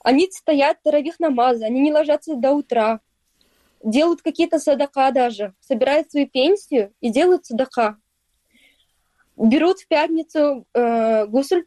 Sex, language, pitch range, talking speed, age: female, Russian, 240-295 Hz, 125 wpm, 20-39